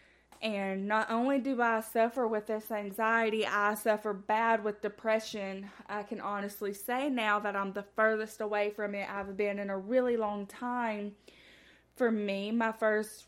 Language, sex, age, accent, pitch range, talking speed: English, female, 20-39, American, 200-230 Hz, 165 wpm